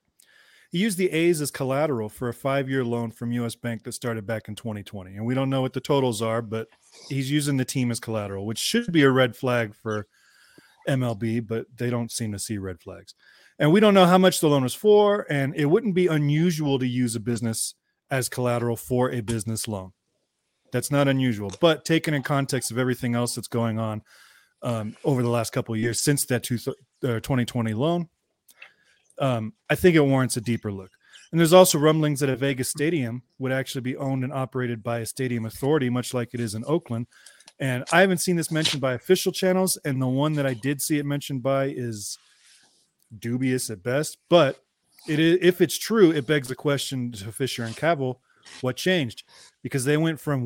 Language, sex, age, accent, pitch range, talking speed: English, male, 30-49, American, 120-150 Hz, 205 wpm